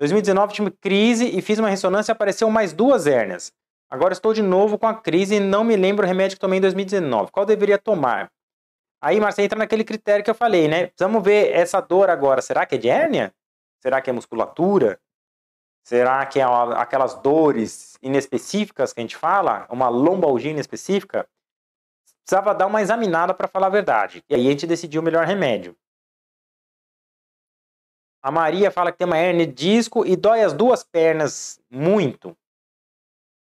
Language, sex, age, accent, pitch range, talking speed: Portuguese, male, 20-39, Brazilian, 155-210 Hz, 175 wpm